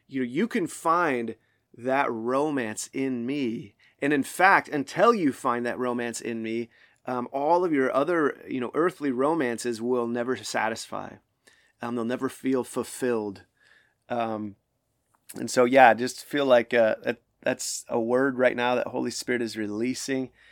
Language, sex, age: English, male, 30-49